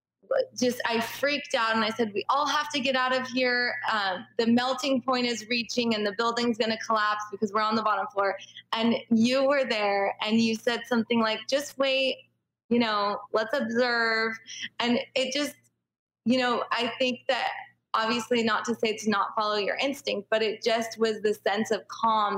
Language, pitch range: English, 205-245 Hz